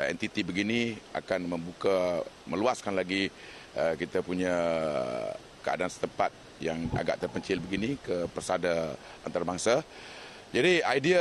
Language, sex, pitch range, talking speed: Malay, male, 90-110 Hz, 105 wpm